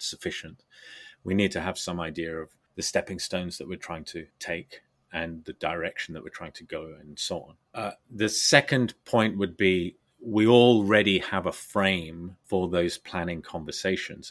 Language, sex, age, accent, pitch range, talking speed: English, male, 30-49, British, 85-100 Hz, 175 wpm